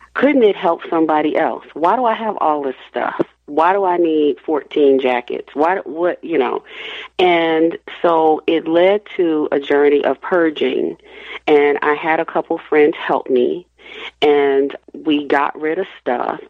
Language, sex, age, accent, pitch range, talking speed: English, female, 40-59, American, 145-195 Hz, 165 wpm